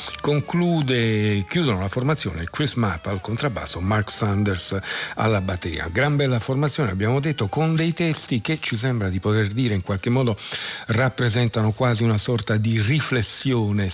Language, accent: Italian, native